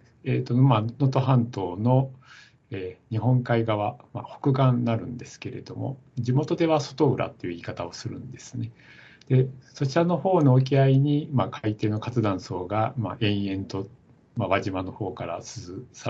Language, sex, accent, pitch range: Japanese, male, native, 115-140 Hz